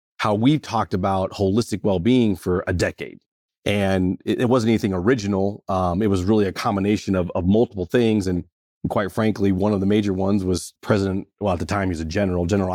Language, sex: English, male